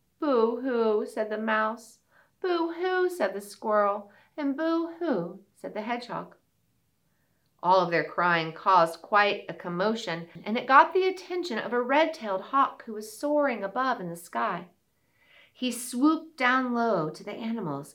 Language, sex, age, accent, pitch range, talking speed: English, female, 40-59, American, 195-310 Hz, 155 wpm